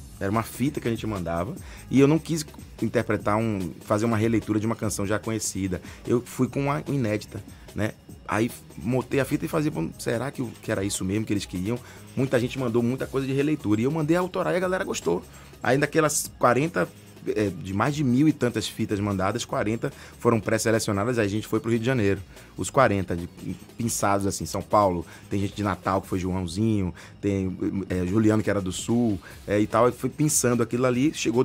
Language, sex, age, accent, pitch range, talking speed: Portuguese, male, 20-39, Brazilian, 100-125 Hz, 215 wpm